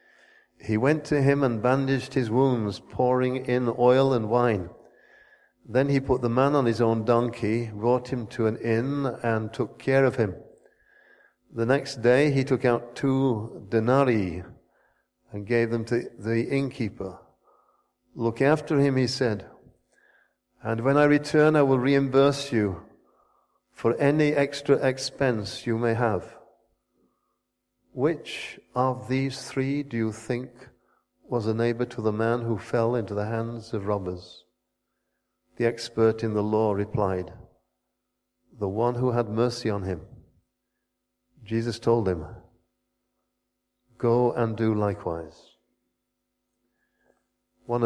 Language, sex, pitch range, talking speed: English, male, 110-130 Hz, 135 wpm